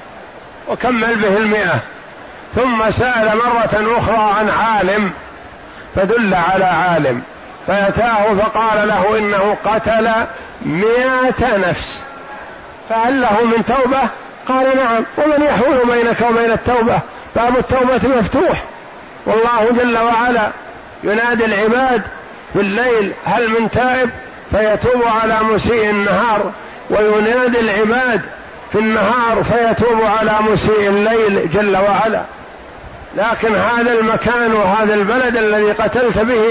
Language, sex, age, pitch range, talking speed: Arabic, male, 50-69, 210-235 Hz, 105 wpm